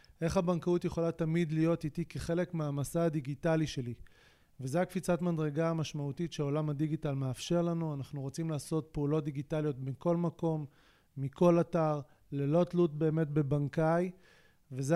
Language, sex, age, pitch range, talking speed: Hebrew, male, 30-49, 145-170 Hz, 130 wpm